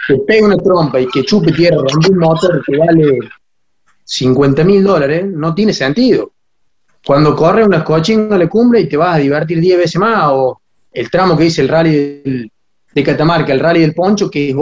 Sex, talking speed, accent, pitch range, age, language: male, 210 wpm, Argentinian, 135-190 Hz, 20-39, Spanish